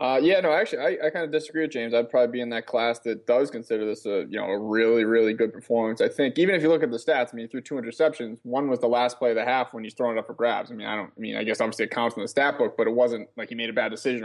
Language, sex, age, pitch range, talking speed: English, male, 20-39, 115-135 Hz, 345 wpm